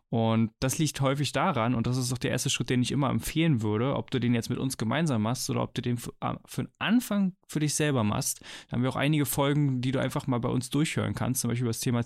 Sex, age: male, 10-29